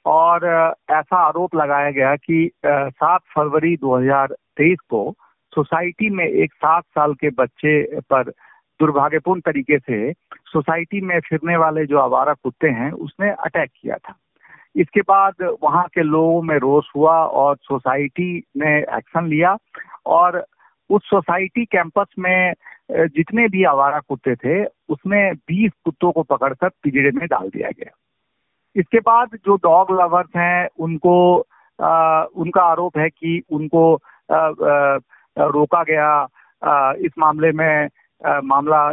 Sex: male